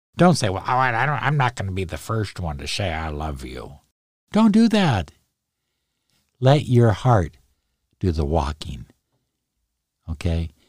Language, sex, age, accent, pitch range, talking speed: English, male, 60-79, American, 80-120 Hz, 165 wpm